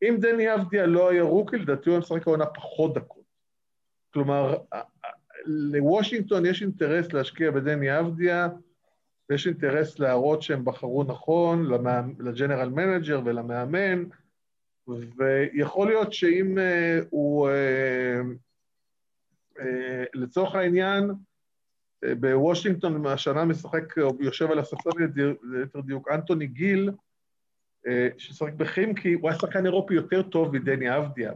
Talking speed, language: 110 wpm, Hebrew